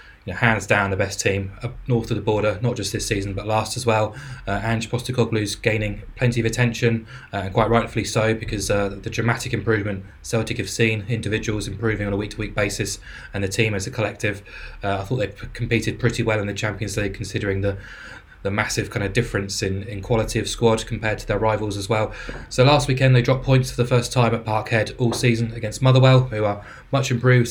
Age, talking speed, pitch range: 20-39, 215 wpm, 105-120 Hz